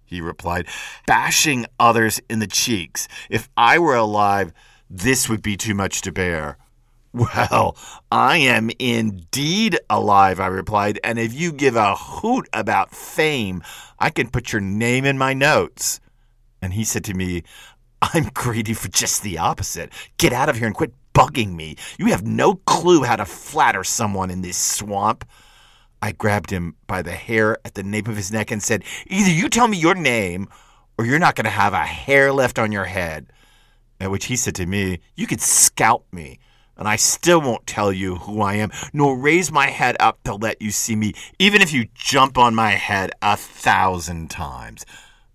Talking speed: 190 wpm